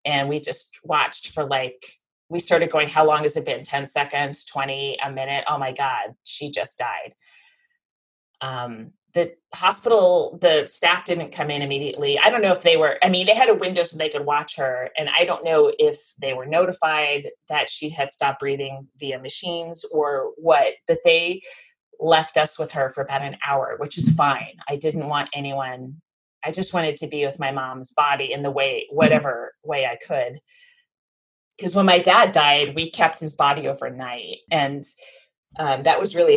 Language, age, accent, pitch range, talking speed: English, 30-49, American, 140-180 Hz, 190 wpm